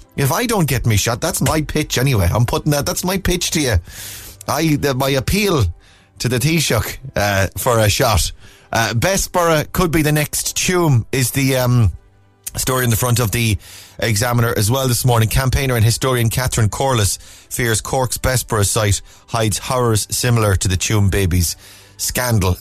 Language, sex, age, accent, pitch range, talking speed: English, male, 30-49, Irish, 100-140 Hz, 175 wpm